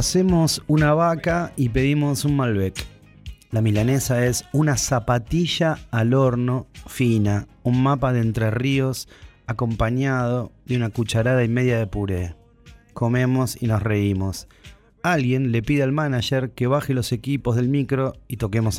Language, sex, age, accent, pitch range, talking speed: Spanish, male, 30-49, Argentinian, 110-135 Hz, 145 wpm